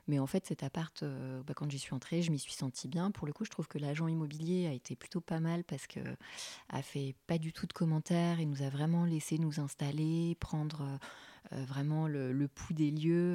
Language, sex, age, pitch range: French, female, 30-49, 140-165 Hz